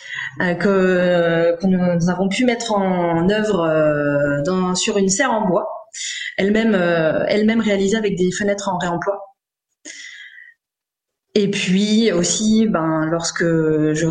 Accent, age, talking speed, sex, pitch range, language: French, 20-39, 130 wpm, female, 175-215 Hz, French